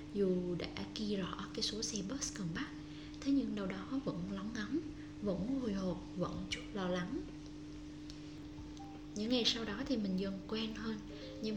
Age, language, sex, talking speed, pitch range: 10-29, Vietnamese, female, 175 wpm, 150-205 Hz